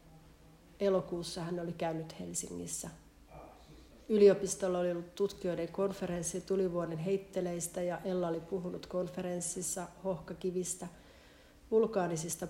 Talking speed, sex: 90 wpm, female